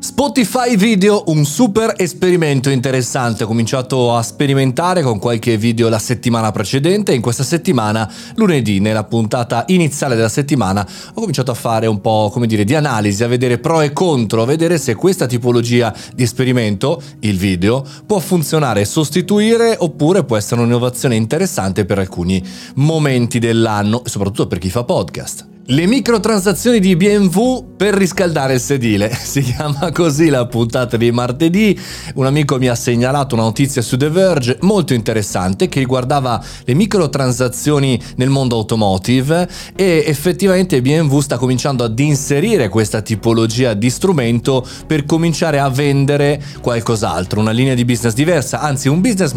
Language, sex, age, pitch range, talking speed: Italian, male, 30-49, 115-160 Hz, 155 wpm